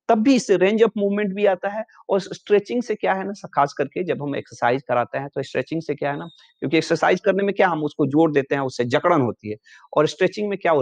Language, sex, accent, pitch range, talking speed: Hindi, male, native, 140-200 Hz, 250 wpm